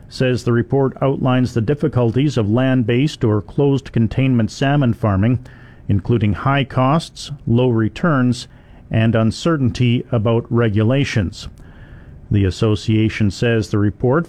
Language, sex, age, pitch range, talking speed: English, male, 50-69, 115-135 Hz, 110 wpm